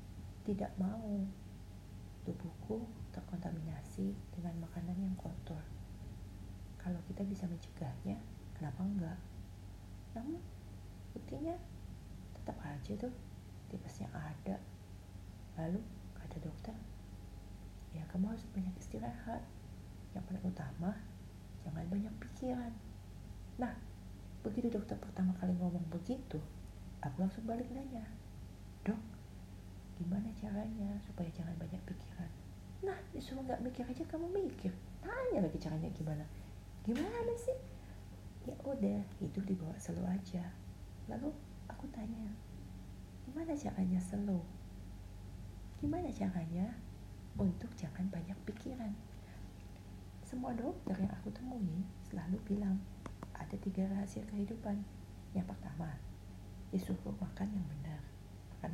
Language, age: Indonesian, 40-59